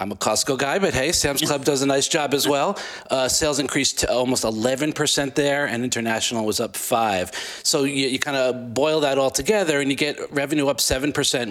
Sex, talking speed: male, 215 wpm